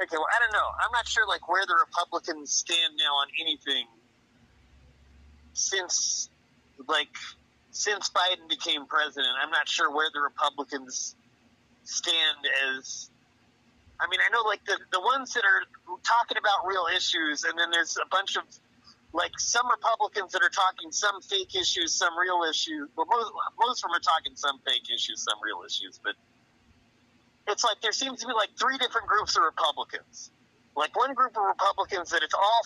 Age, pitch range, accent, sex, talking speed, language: 30-49, 145-235 Hz, American, male, 175 wpm, English